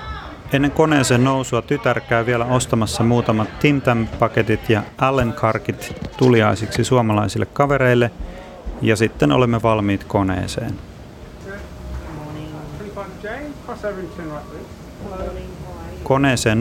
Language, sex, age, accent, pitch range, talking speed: Finnish, male, 30-49, native, 100-130 Hz, 75 wpm